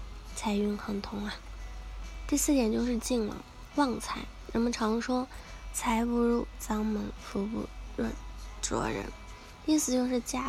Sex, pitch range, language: female, 205-230 Hz, Chinese